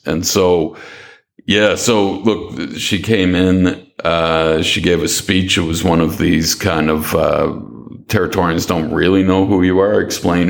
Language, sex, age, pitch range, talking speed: English, male, 50-69, 85-95 Hz, 165 wpm